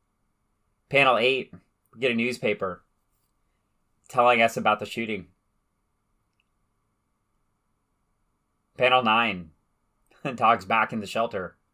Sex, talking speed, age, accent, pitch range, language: male, 90 wpm, 30-49, American, 100-120 Hz, English